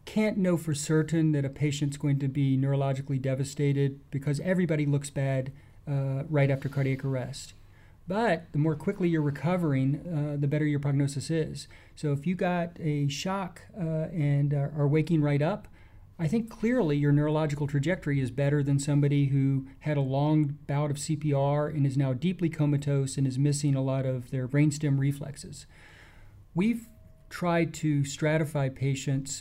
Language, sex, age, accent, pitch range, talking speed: English, male, 40-59, American, 135-155 Hz, 165 wpm